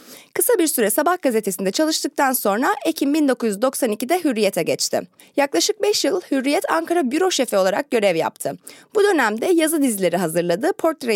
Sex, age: female, 30-49